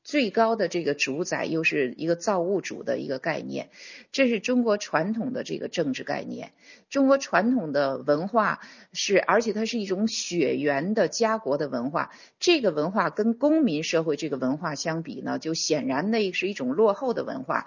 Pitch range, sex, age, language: 170-235 Hz, female, 50-69, Chinese